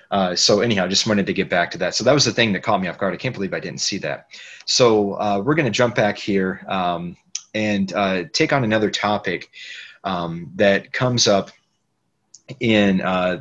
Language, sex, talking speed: English, male, 220 wpm